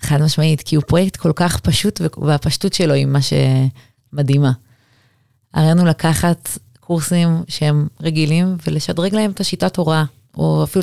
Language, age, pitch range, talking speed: Hebrew, 30-49, 135-175 Hz, 140 wpm